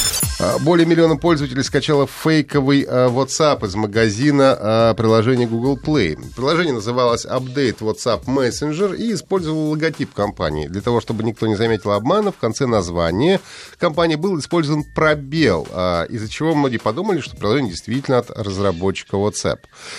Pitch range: 105-150 Hz